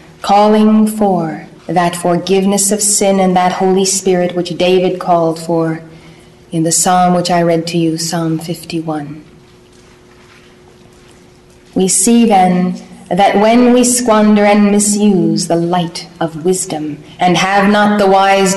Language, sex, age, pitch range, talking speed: English, female, 30-49, 175-210 Hz, 135 wpm